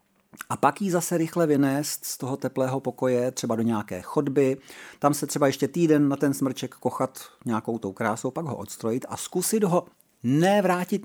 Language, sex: Czech, male